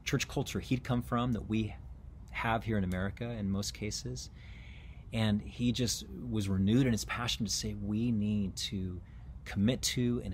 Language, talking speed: English, 175 wpm